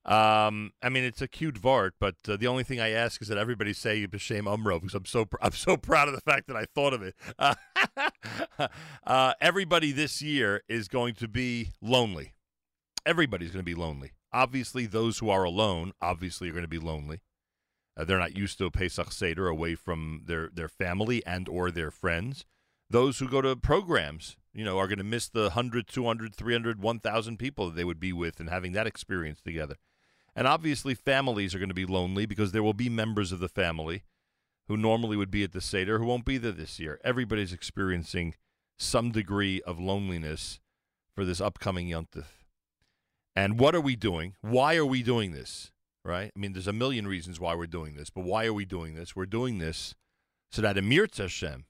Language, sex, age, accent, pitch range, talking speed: English, male, 40-59, American, 90-120 Hz, 210 wpm